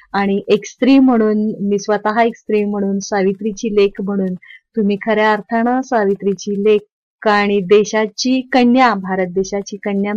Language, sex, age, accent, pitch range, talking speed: Marathi, female, 30-49, native, 195-230 Hz, 135 wpm